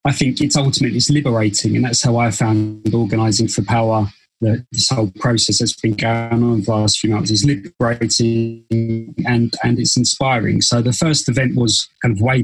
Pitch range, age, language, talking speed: 110-125 Hz, 20-39, English, 190 wpm